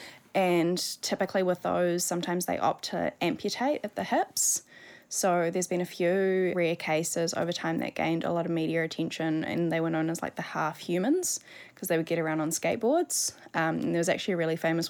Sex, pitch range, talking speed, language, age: female, 165-190 Hz, 210 wpm, English, 10-29